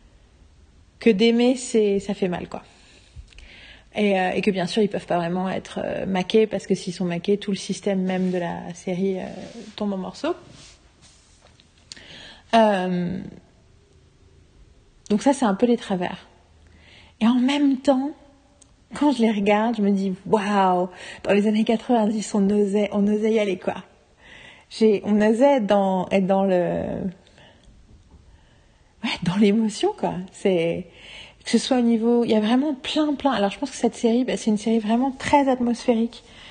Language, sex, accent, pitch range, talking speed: French, female, French, 195-235 Hz, 175 wpm